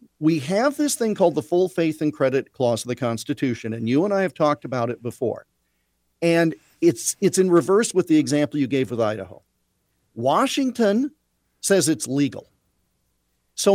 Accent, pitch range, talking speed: American, 120-180 Hz, 175 wpm